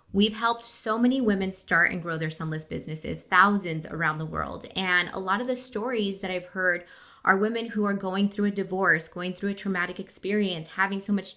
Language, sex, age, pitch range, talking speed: English, female, 20-39, 180-215 Hz, 210 wpm